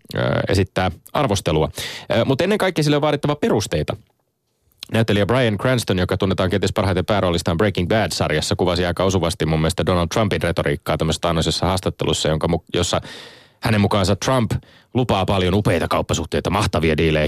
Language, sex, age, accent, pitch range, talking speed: Finnish, male, 30-49, native, 85-115 Hz, 140 wpm